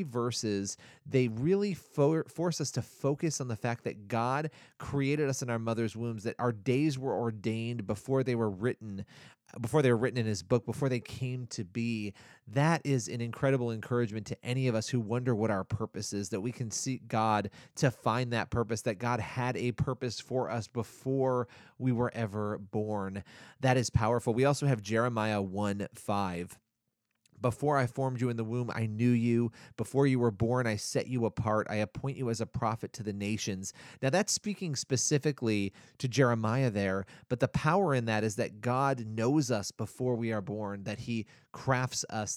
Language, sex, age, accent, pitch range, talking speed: English, male, 30-49, American, 110-130 Hz, 190 wpm